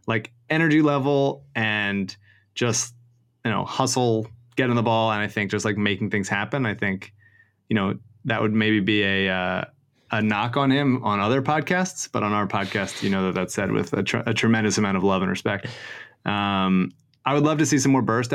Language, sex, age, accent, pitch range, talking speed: English, male, 20-39, American, 100-125 Hz, 215 wpm